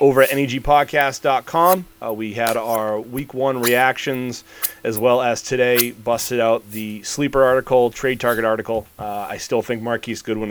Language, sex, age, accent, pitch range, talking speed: English, male, 30-49, American, 105-135 Hz, 155 wpm